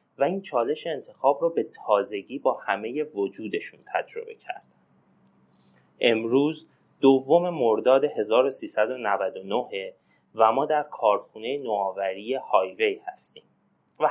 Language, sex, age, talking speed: Persian, male, 30-49, 100 wpm